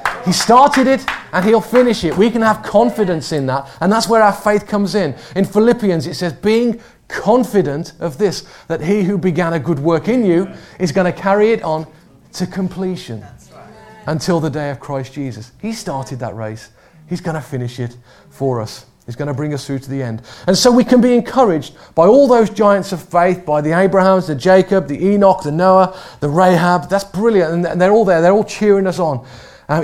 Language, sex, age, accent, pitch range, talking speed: English, male, 30-49, British, 135-190 Hz, 215 wpm